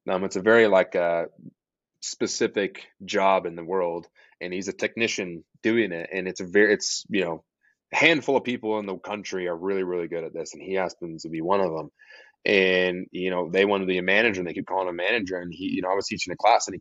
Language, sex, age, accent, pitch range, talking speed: English, male, 20-39, American, 95-120 Hz, 260 wpm